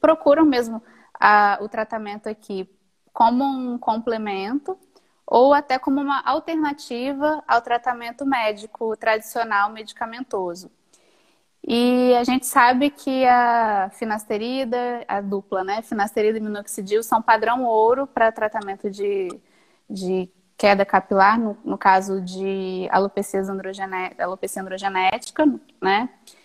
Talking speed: 110 wpm